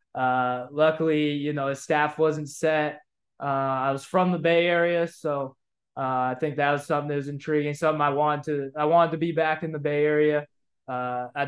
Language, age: English, 20-39